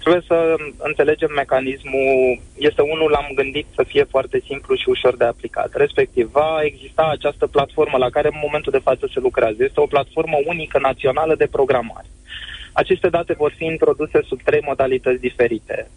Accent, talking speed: native, 170 wpm